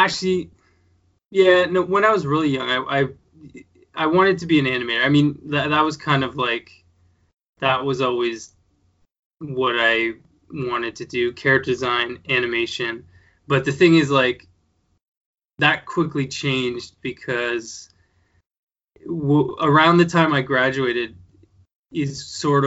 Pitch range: 115-140 Hz